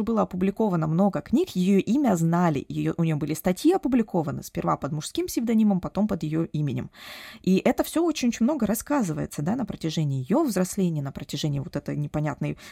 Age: 20-39